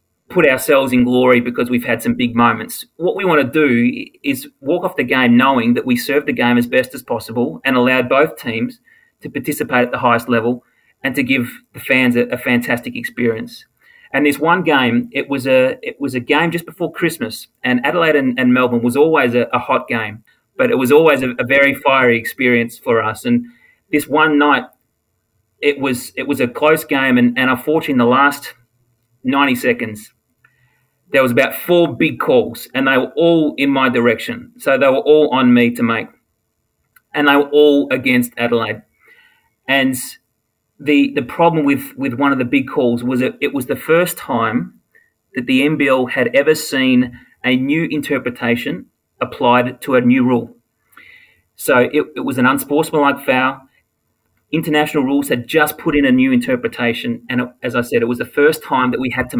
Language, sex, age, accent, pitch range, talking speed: English, male, 30-49, Australian, 125-150 Hz, 195 wpm